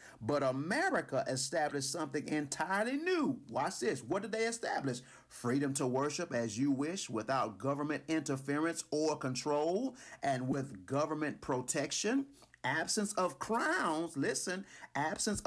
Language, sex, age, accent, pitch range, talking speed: English, male, 40-59, American, 120-190 Hz, 125 wpm